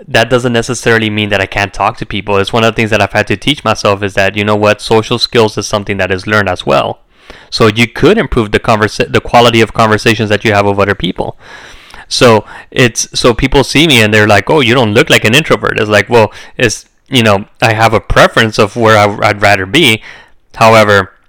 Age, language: 20-39, English